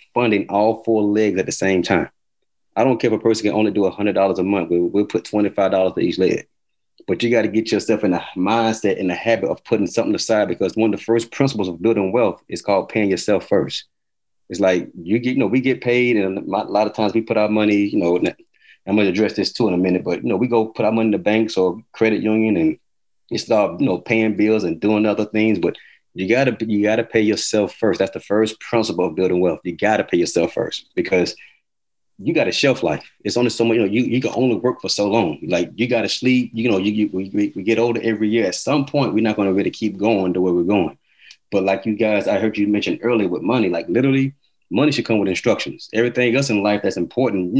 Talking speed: 260 wpm